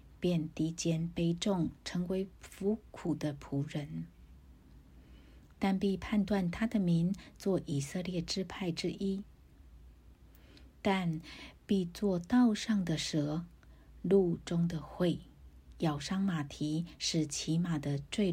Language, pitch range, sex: Chinese, 150-195 Hz, female